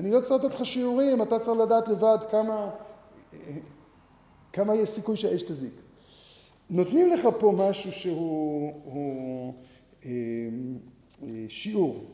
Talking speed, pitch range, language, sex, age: 110 wpm, 160-230 Hz, Hebrew, male, 50-69